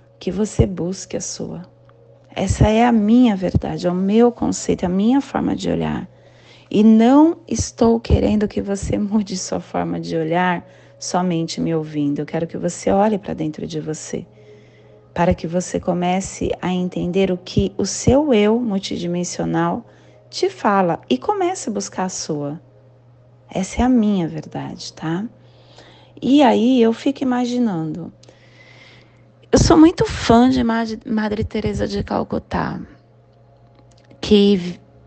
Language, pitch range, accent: Portuguese, 140-230 Hz, Brazilian